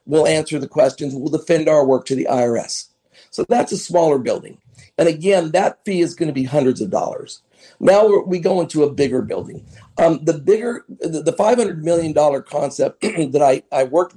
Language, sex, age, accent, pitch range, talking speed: English, male, 50-69, American, 140-170 Hz, 190 wpm